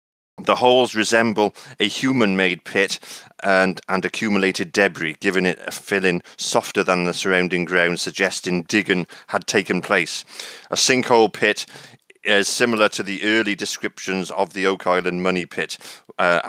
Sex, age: male, 30-49